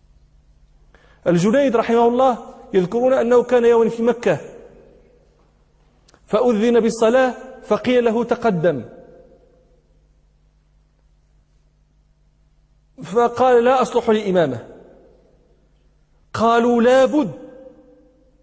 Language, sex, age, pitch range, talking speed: Arabic, male, 40-59, 230-265 Hz, 65 wpm